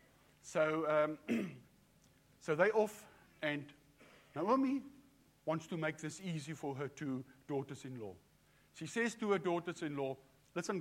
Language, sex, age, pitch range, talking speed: English, male, 60-79, 135-180 Hz, 120 wpm